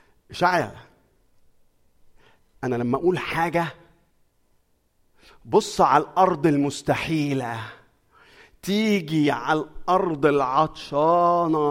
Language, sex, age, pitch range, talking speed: Arabic, male, 50-69, 115-165 Hz, 60 wpm